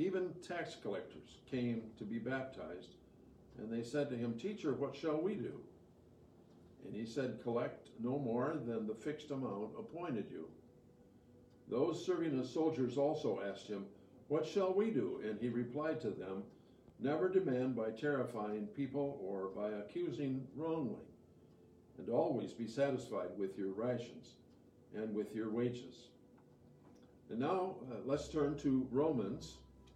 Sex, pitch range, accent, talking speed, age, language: male, 110-145 Hz, American, 145 wpm, 60-79, English